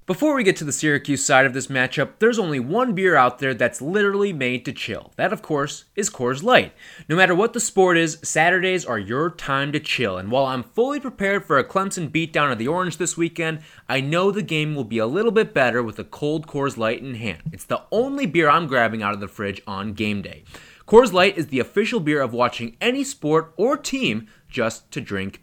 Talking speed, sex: 230 wpm, male